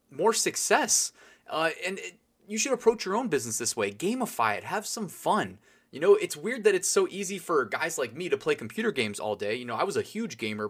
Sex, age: male, 20-39